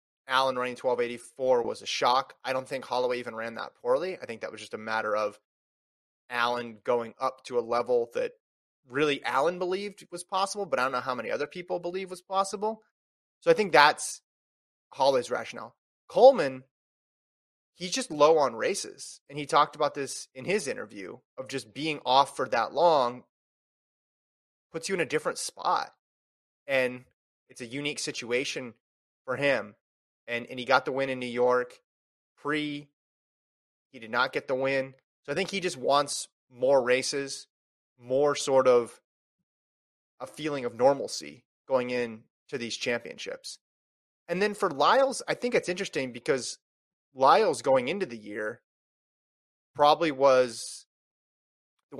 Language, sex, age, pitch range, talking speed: English, male, 20-39, 125-185 Hz, 160 wpm